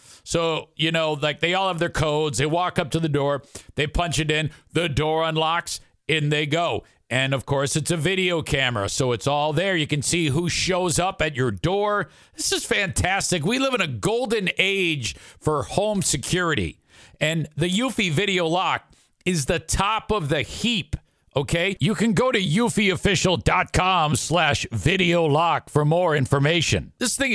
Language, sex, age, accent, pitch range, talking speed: English, male, 50-69, American, 150-200 Hz, 180 wpm